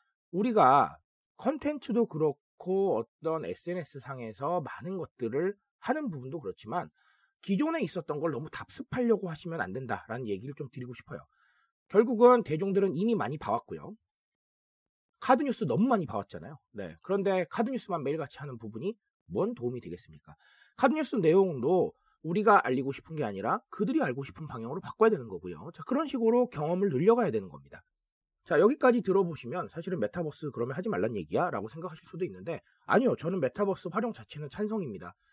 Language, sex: Korean, male